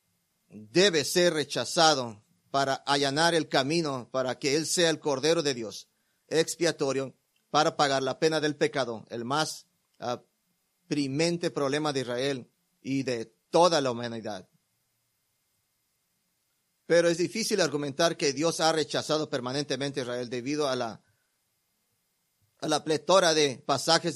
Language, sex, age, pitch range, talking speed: English, male, 40-59, 135-160 Hz, 125 wpm